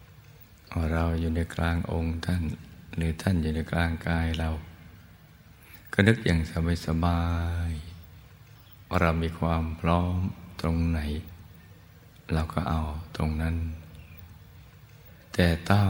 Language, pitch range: Thai, 80-95 Hz